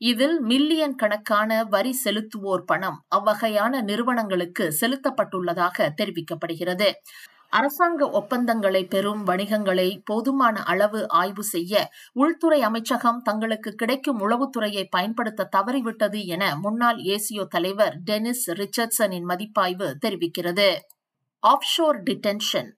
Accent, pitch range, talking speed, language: native, 195-250 Hz, 90 wpm, Tamil